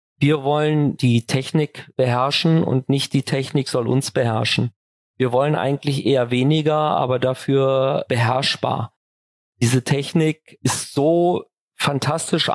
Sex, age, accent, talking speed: male, 40-59, German, 120 wpm